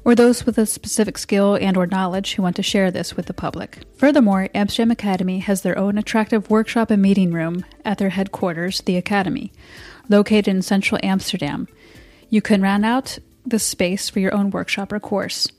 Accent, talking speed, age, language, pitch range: American, 190 wpm, 30-49, English, 190-220 Hz